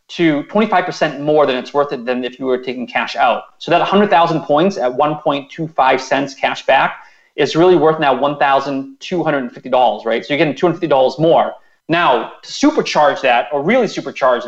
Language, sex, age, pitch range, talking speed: English, male, 30-49, 140-180 Hz, 170 wpm